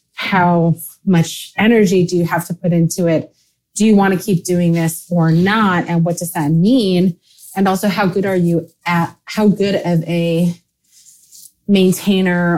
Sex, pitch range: female, 160-190 Hz